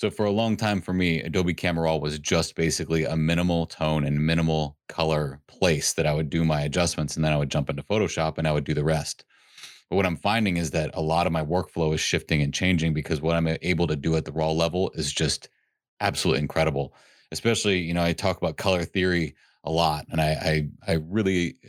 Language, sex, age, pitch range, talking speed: English, male, 30-49, 80-90 Hz, 230 wpm